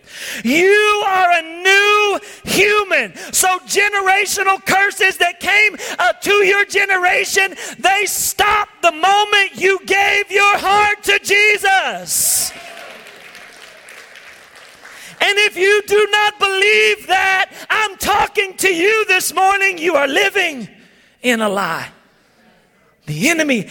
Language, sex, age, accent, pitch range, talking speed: English, male, 40-59, American, 265-380 Hz, 115 wpm